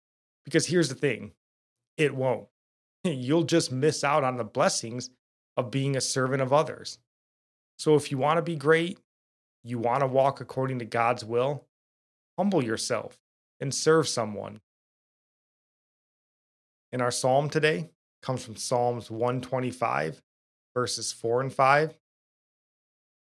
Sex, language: male, English